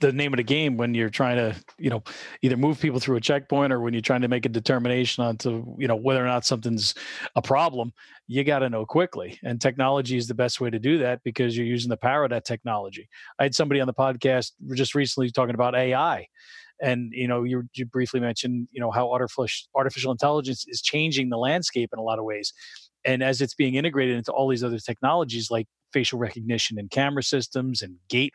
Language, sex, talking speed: English, male, 230 wpm